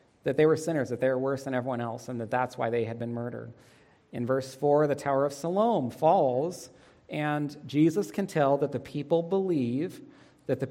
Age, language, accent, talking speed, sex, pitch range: 40-59, English, American, 205 wpm, male, 130-160 Hz